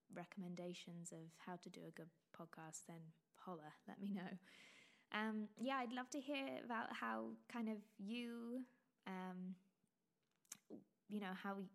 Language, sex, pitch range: English, female, 180-225 Hz